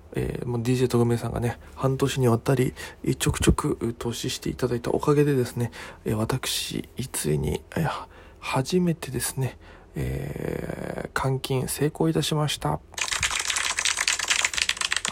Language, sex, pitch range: Japanese, male, 100-130 Hz